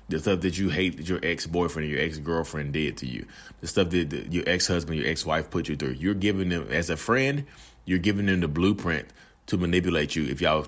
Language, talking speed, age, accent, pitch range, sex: English, 230 wpm, 30-49, American, 80-95 Hz, male